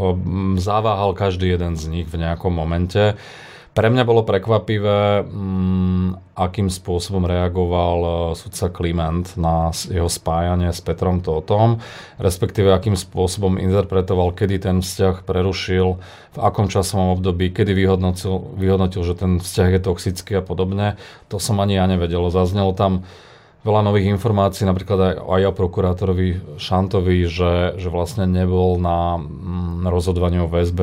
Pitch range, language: 90-100 Hz, Slovak